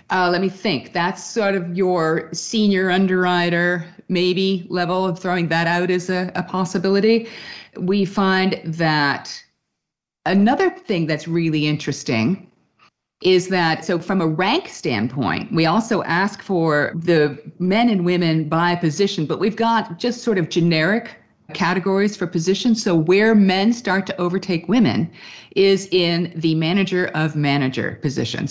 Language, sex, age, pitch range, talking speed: English, female, 40-59, 150-190 Hz, 145 wpm